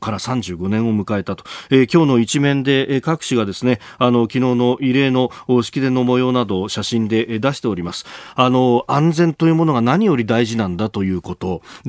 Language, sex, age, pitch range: Japanese, male, 40-59, 105-145 Hz